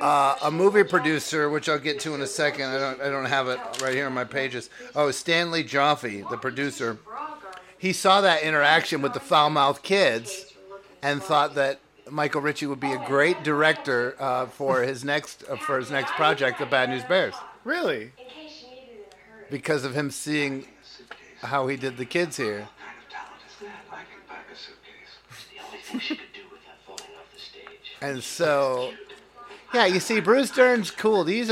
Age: 50-69